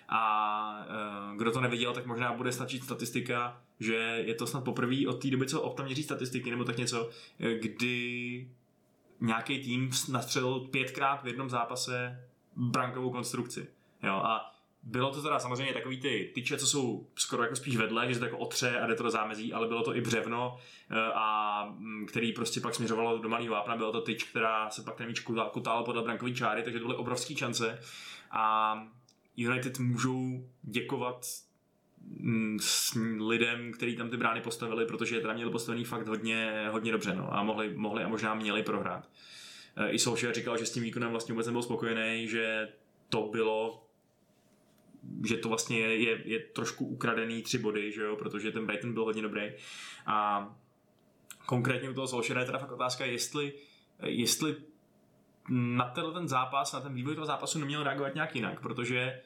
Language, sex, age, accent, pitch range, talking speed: Czech, male, 20-39, native, 110-125 Hz, 175 wpm